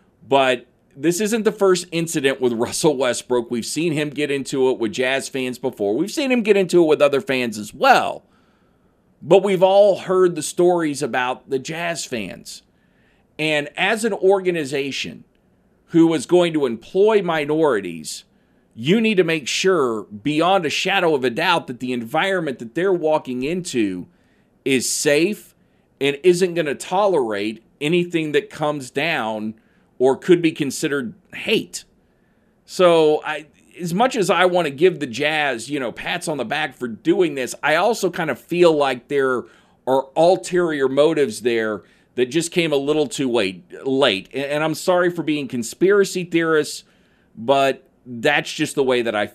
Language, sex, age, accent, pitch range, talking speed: English, male, 40-59, American, 135-180 Hz, 165 wpm